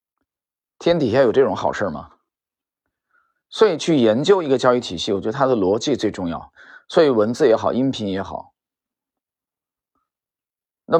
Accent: native